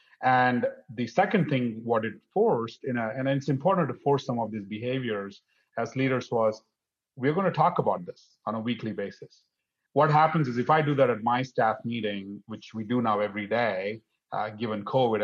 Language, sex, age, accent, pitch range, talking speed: English, male, 30-49, Indian, 110-130 Hz, 195 wpm